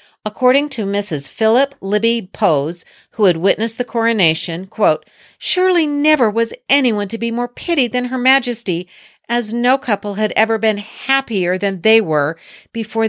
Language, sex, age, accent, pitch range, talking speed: English, female, 50-69, American, 155-225 Hz, 155 wpm